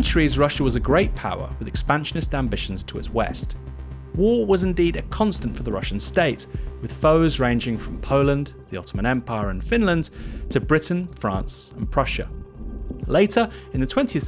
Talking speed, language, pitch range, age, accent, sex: 170 wpm, English, 110-160 Hz, 30-49, British, male